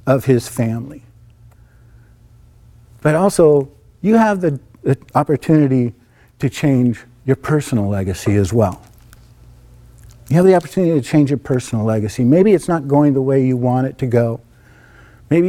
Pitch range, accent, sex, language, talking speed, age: 115-160 Hz, American, male, English, 145 wpm, 50-69